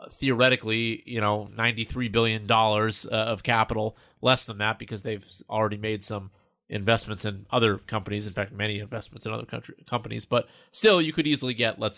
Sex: male